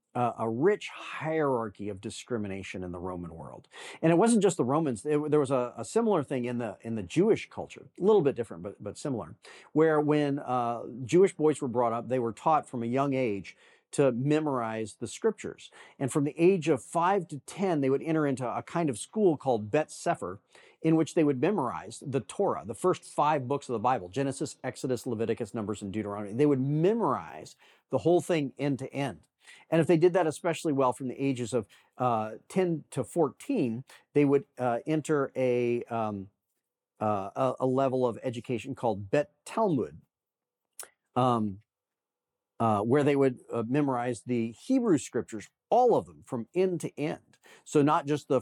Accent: American